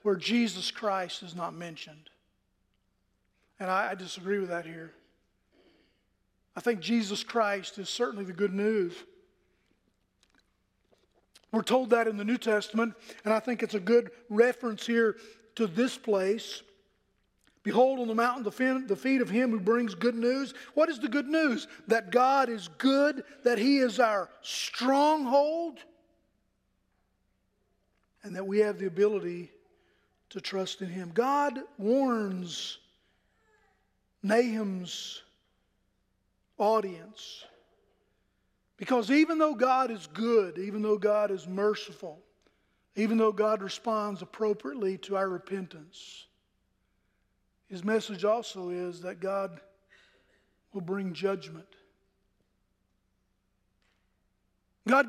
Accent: American